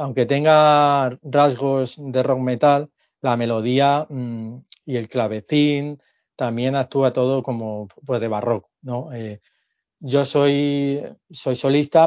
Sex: male